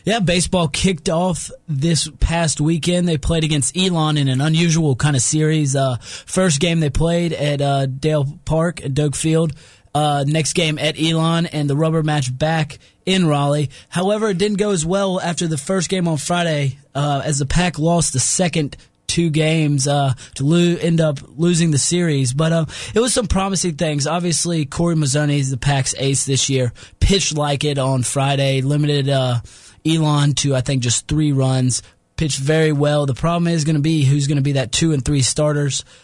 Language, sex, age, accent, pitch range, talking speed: English, male, 20-39, American, 140-165 Hz, 195 wpm